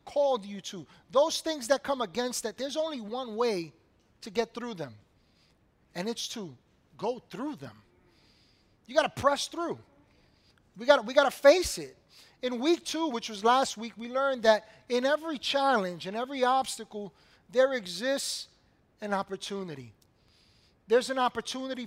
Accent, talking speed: American, 160 wpm